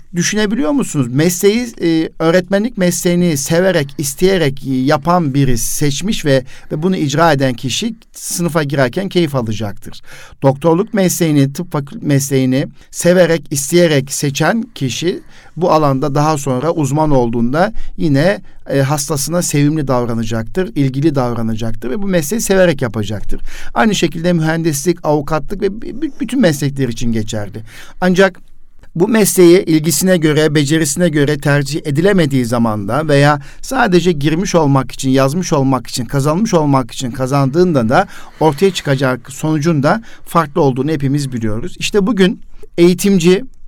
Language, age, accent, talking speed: Turkish, 50-69, native, 120 wpm